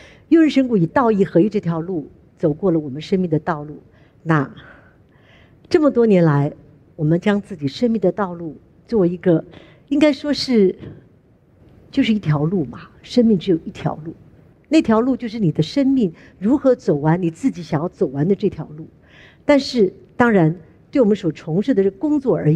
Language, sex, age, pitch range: Chinese, female, 50-69, 155-220 Hz